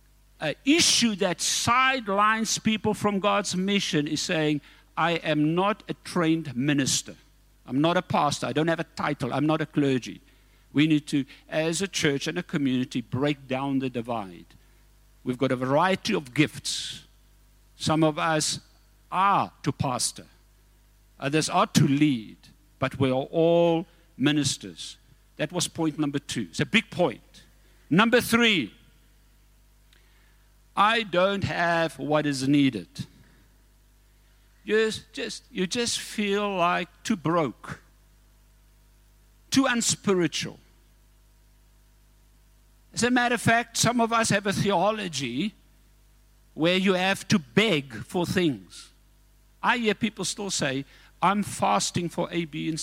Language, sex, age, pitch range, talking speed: English, male, 60-79, 145-200 Hz, 135 wpm